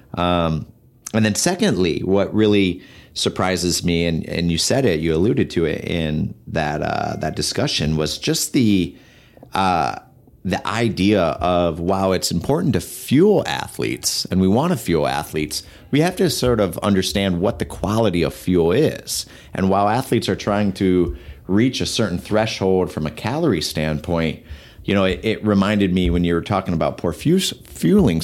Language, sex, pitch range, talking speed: English, male, 80-100 Hz, 170 wpm